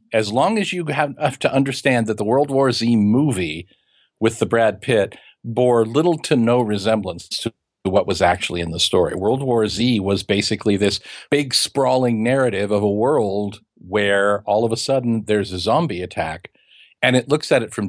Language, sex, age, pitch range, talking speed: English, male, 50-69, 105-130 Hz, 190 wpm